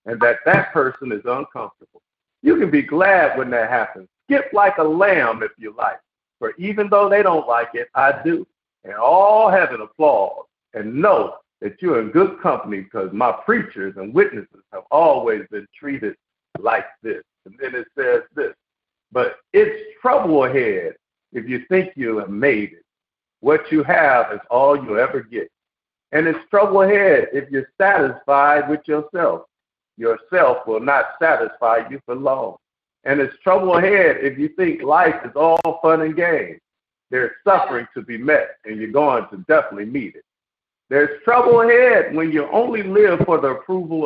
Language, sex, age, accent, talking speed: English, male, 50-69, American, 170 wpm